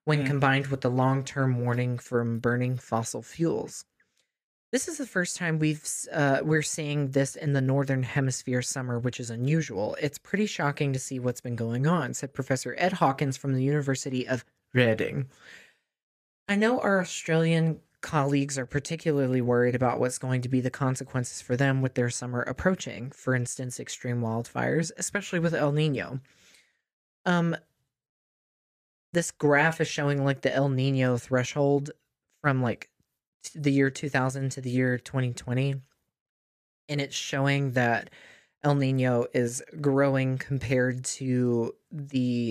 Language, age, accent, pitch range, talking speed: English, 20-39, American, 125-145 Hz, 150 wpm